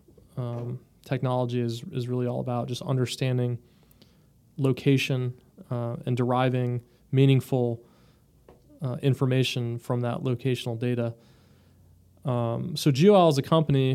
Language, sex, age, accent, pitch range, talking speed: English, male, 20-39, American, 125-140 Hz, 110 wpm